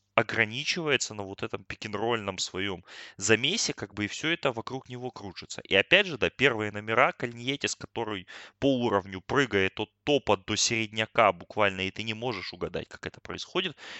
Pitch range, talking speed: 100-135 Hz, 165 wpm